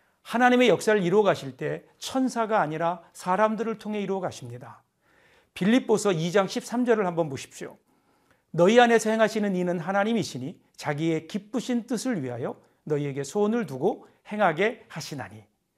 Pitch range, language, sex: 170-235 Hz, Korean, male